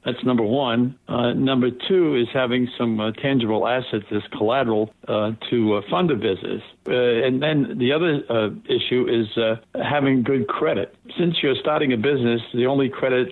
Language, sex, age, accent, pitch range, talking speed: English, male, 60-79, American, 115-135 Hz, 180 wpm